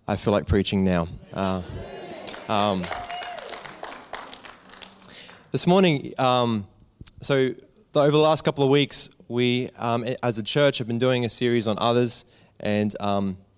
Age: 20-39